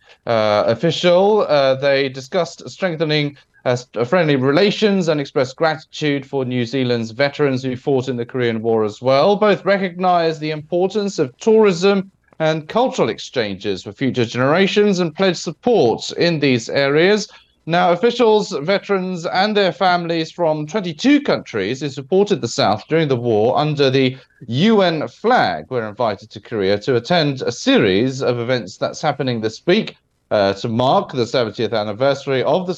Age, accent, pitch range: 30-49, British, 130-185 Hz